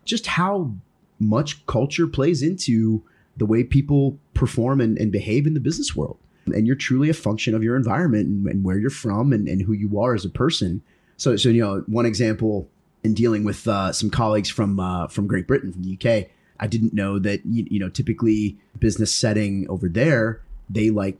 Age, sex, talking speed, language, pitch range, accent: 30-49, male, 205 wpm, English, 95-115 Hz, American